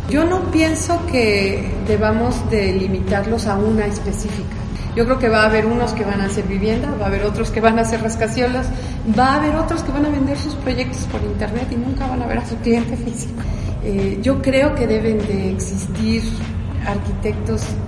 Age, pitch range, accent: 40-59, 95-125 Hz, Mexican